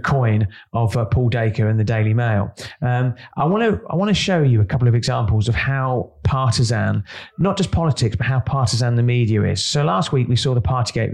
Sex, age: male, 30-49